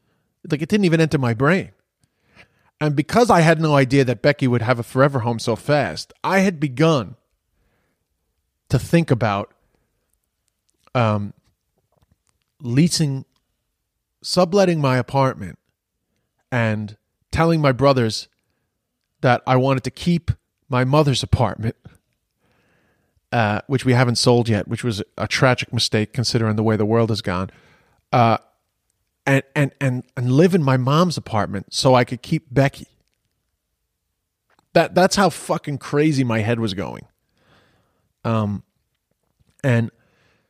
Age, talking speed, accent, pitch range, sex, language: 30-49, 130 wpm, American, 110-145 Hz, male, English